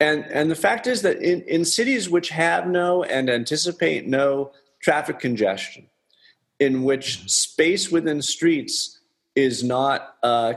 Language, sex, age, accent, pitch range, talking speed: English, male, 40-59, American, 115-155 Hz, 140 wpm